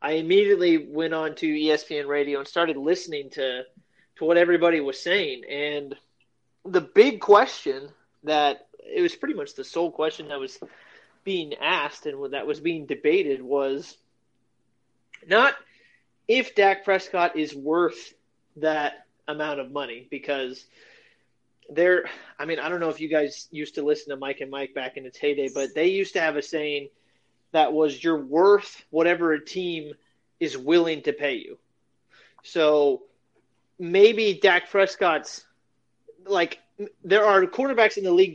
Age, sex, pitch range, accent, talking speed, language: 30-49, male, 145-240 Hz, American, 160 wpm, English